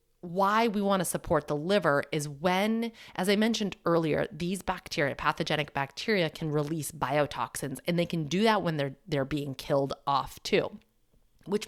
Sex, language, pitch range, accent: female, English, 150-195 Hz, American